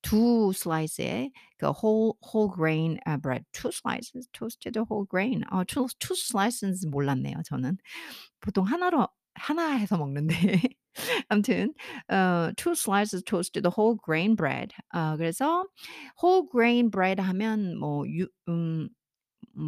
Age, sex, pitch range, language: 50-69, female, 165-235 Hz, Korean